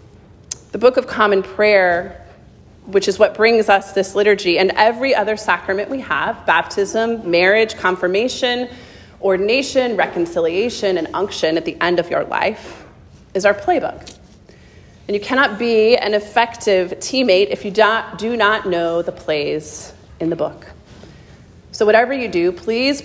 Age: 30-49